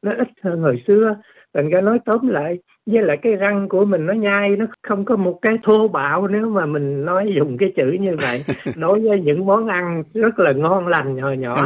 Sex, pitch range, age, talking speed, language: male, 140-205 Hz, 60-79, 230 wpm, Vietnamese